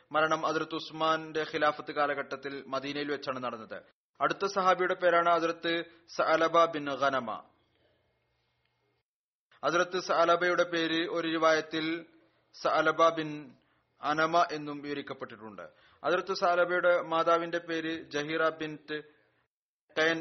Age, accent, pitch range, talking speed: 30-49, native, 145-165 Hz, 80 wpm